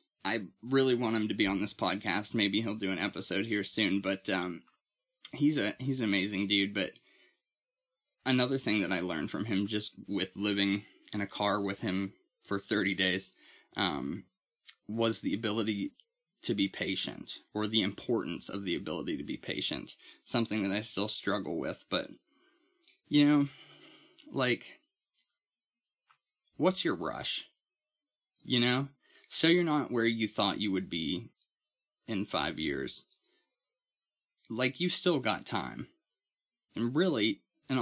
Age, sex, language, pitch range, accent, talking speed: 20-39, male, English, 100-140 Hz, American, 150 wpm